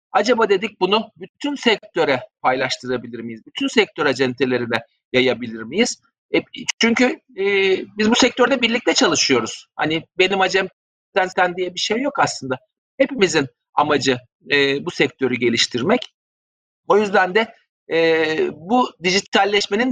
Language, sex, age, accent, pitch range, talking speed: Turkish, male, 50-69, native, 155-220 Hz, 125 wpm